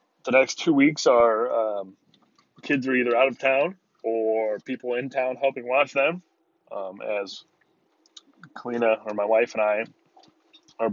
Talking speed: 155 wpm